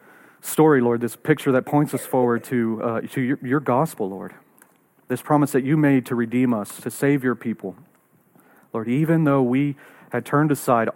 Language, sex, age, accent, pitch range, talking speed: English, male, 40-59, American, 115-140 Hz, 185 wpm